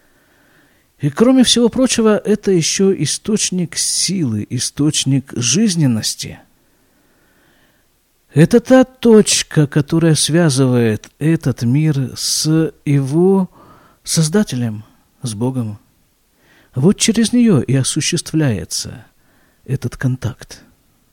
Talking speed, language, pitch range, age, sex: 80 wpm, Russian, 125-180 Hz, 50-69, male